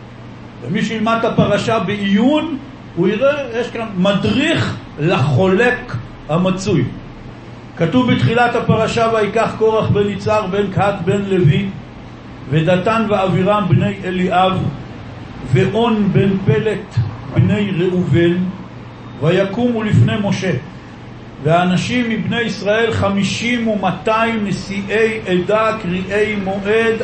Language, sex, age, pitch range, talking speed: Hebrew, male, 60-79, 170-220 Hz, 100 wpm